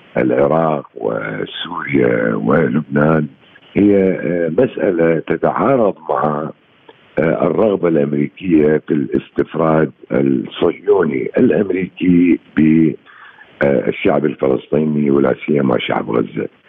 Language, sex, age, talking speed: Arabic, male, 60-79, 70 wpm